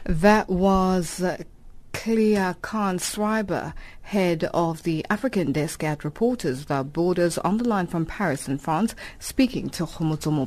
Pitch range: 155-215 Hz